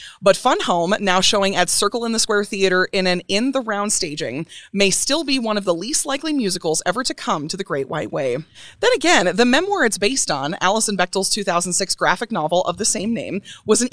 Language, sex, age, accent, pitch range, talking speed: English, female, 30-49, American, 190-260 Hz, 215 wpm